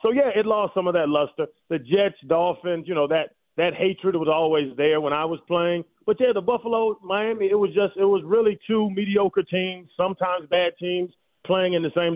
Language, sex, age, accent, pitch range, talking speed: English, male, 30-49, American, 155-205 Hz, 220 wpm